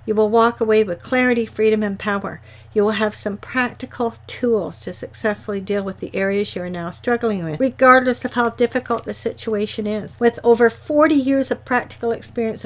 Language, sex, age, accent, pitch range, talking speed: English, female, 60-79, American, 195-235 Hz, 190 wpm